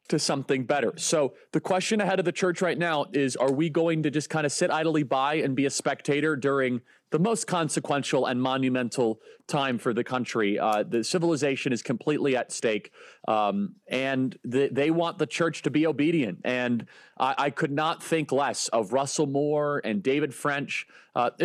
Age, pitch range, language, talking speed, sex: 30-49, 130-160 Hz, English, 190 wpm, male